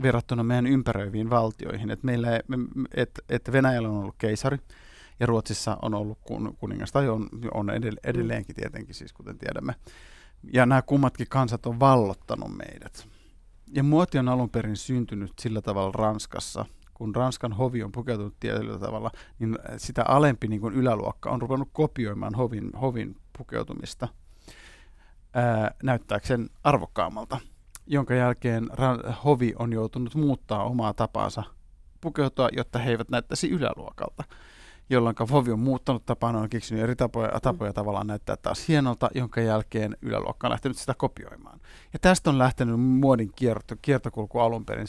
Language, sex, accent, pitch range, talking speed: Finnish, male, native, 110-130 Hz, 140 wpm